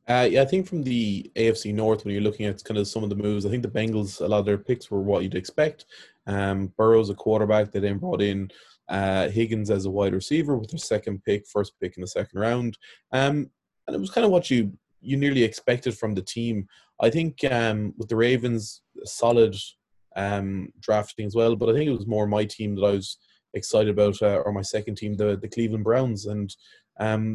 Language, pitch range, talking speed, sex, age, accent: English, 100-115 Hz, 225 wpm, male, 20-39, Irish